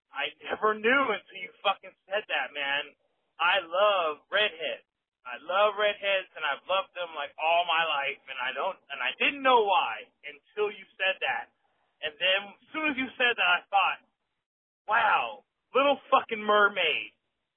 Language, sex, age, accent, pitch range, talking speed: English, male, 30-49, American, 170-245 Hz, 165 wpm